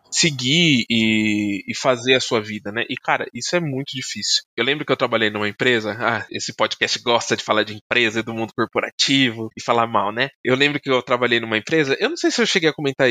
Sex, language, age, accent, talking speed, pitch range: male, Portuguese, 20-39, Brazilian, 240 wpm, 115-155 Hz